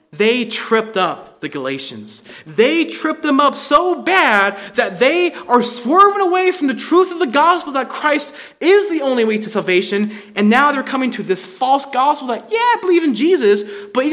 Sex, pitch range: male, 220-300 Hz